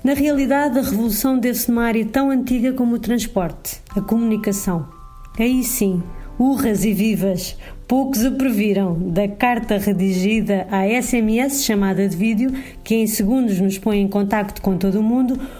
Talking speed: 160 wpm